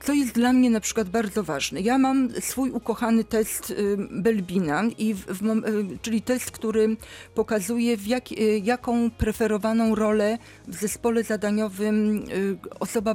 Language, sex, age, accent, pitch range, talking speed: Polish, female, 40-59, native, 215-240 Hz, 160 wpm